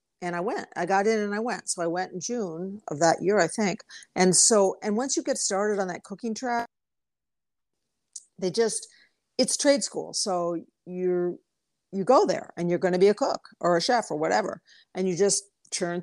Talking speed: 205 wpm